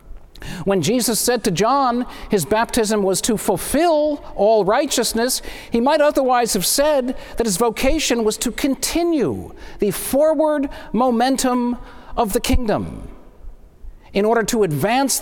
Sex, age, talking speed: male, 50-69, 130 wpm